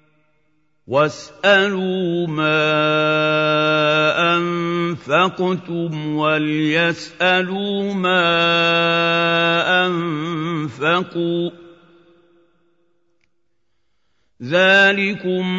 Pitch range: 155-180 Hz